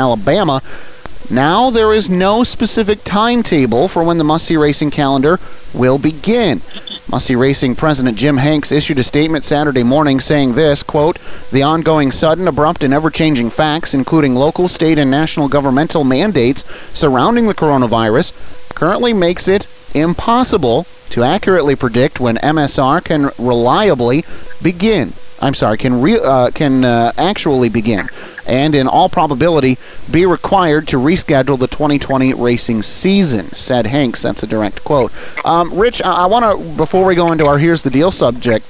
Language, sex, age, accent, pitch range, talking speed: English, male, 30-49, American, 130-170 Hz, 155 wpm